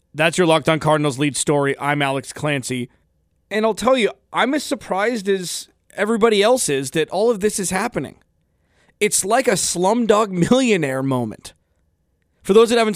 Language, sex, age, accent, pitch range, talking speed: English, male, 30-49, American, 135-190 Hz, 170 wpm